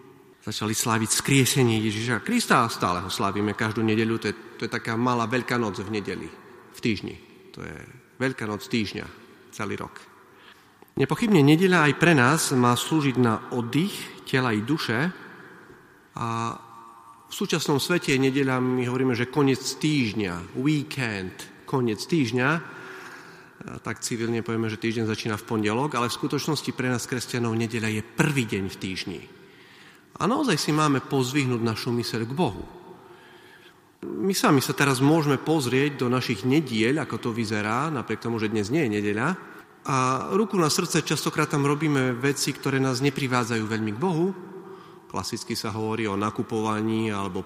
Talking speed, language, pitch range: 155 wpm, Slovak, 110-145 Hz